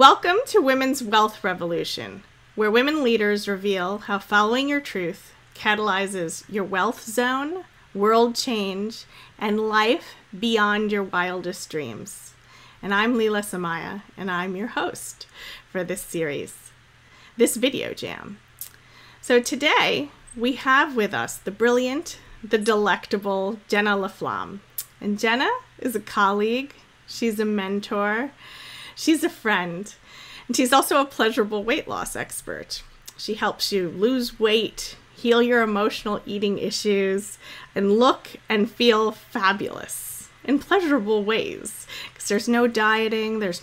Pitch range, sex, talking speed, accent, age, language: 200-245 Hz, female, 130 wpm, American, 30-49, English